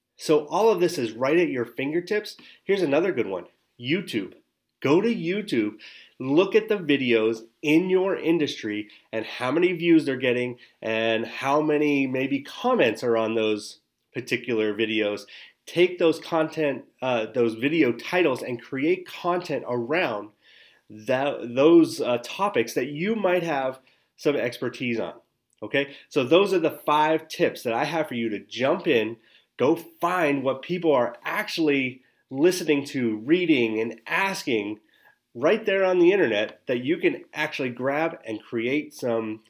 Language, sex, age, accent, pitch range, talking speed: English, male, 30-49, American, 115-170 Hz, 155 wpm